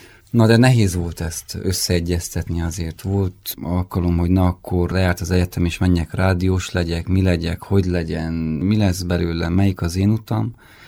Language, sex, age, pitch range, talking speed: Hungarian, male, 30-49, 90-100 Hz, 165 wpm